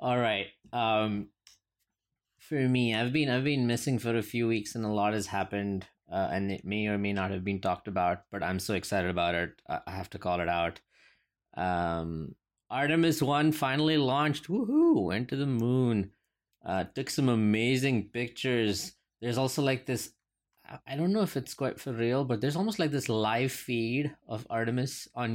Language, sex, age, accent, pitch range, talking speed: English, male, 20-39, Indian, 95-120 Hz, 185 wpm